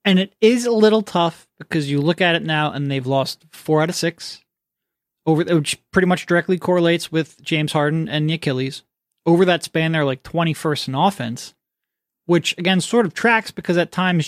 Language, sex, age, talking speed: English, male, 20-39, 200 wpm